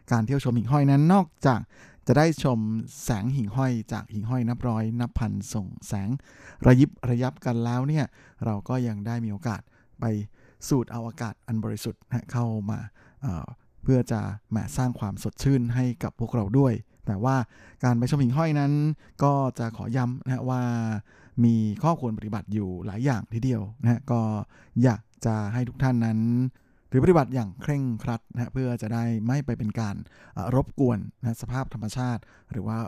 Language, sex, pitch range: Thai, male, 110-130 Hz